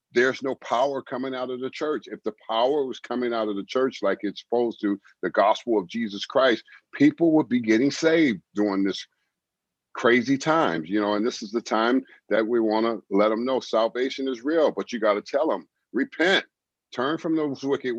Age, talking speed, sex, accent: 50-69, 210 wpm, male, American